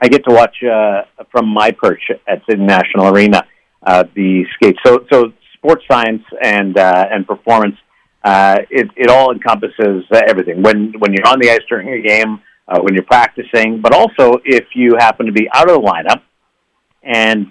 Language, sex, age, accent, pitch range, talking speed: English, male, 50-69, American, 105-115 Hz, 185 wpm